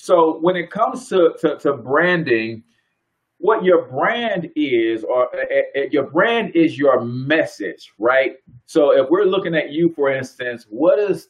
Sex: male